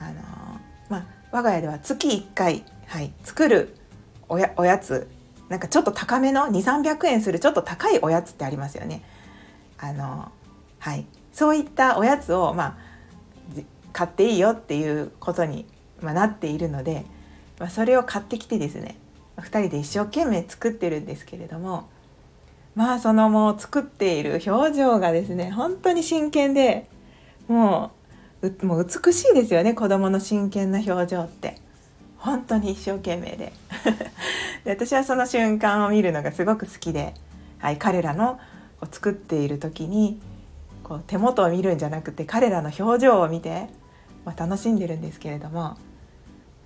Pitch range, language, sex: 160-230 Hz, Japanese, female